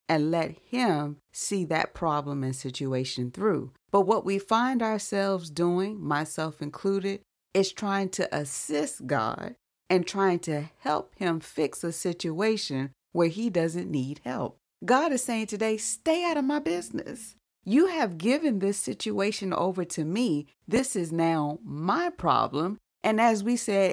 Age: 40-59